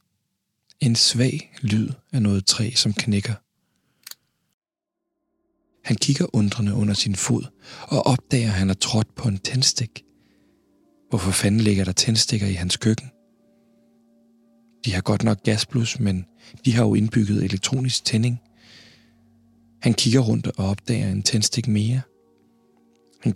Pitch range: 100-120 Hz